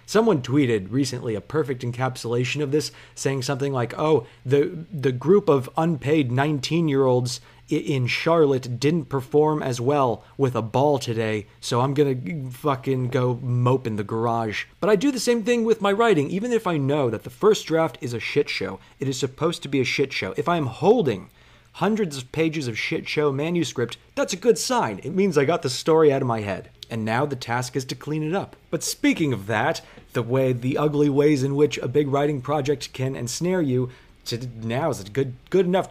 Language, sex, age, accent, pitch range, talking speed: English, male, 30-49, American, 125-155 Hz, 210 wpm